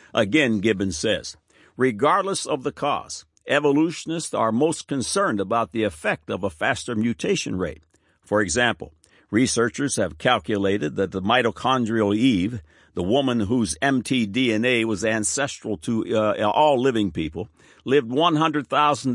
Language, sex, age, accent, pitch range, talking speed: English, male, 60-79, American, 100-145 Hz, 130 wpm